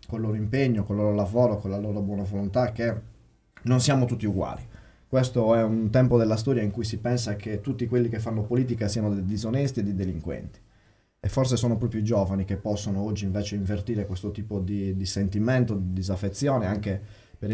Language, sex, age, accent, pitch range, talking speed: Italian, male, 20-39, native, 100-120 Hz, 205 wpm